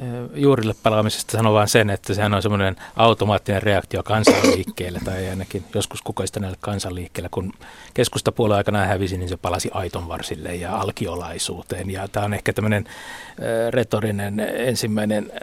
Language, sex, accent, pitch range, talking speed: Finnish, male, native, 95-110 Hz, 135 wpm